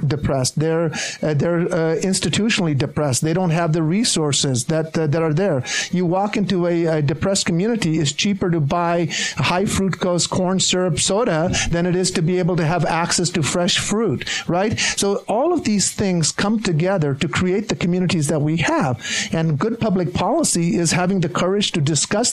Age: 50-69